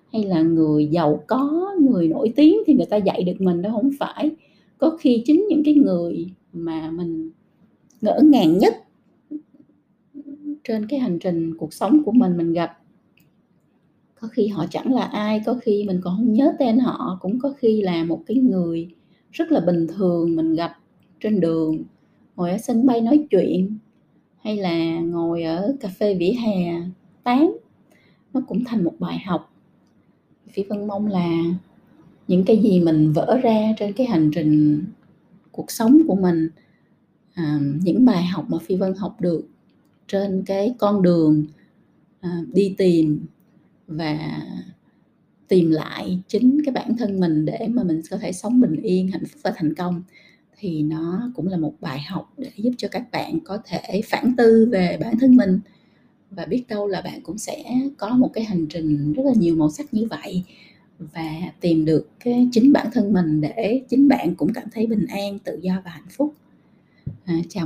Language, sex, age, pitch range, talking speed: Vietnamese, female, 20-39, 170-235 Hz, 180 wpm